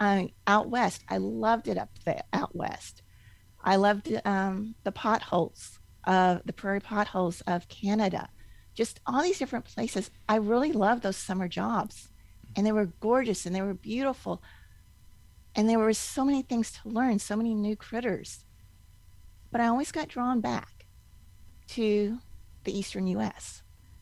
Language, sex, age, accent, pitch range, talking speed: English, female, 40-59, American, 165-220 Hz, 150 wpm